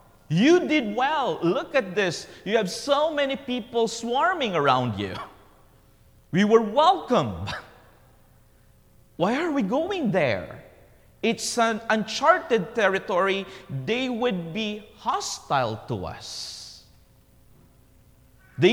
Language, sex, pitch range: English, male, 140-225 Hz